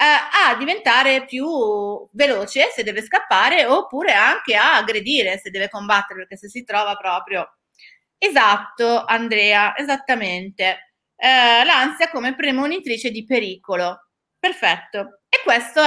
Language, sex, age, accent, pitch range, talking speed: Italian, female, 30-49, native, 200-270 Hz, 120 wpm